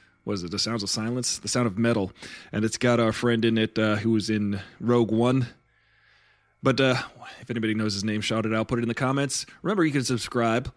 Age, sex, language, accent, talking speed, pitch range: 30-49, male, English, American, 235 wpm, 105-130 Hz